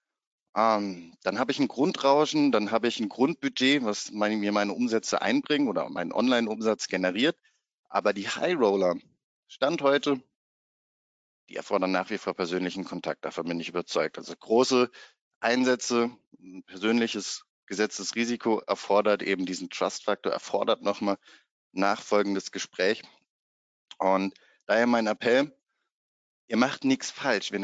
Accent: German